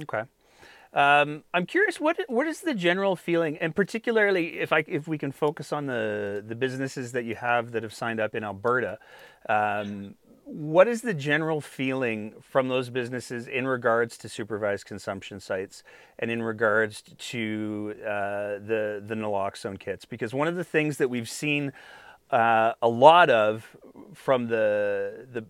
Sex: male